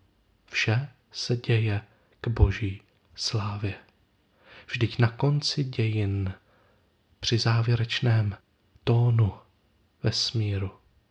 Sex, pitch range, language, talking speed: male, 105-140 Hz, Czech, 75 wpm